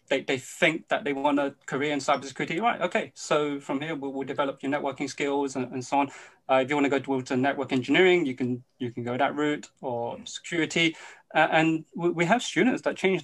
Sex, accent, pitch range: male, British, 135-160 Hz